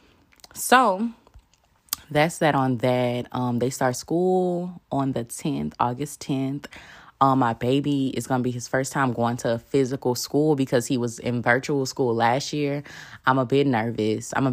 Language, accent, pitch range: English, American, 120-140 Hz